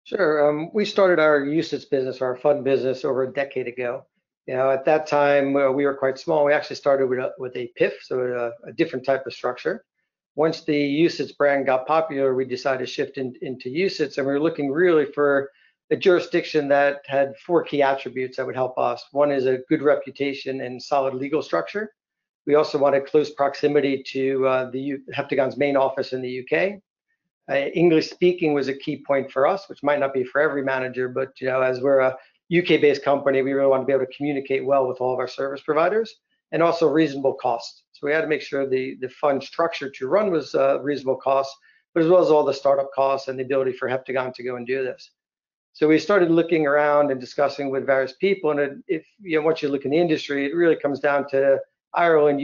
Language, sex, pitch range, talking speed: English, male, 130-155 Hz, 225 wpm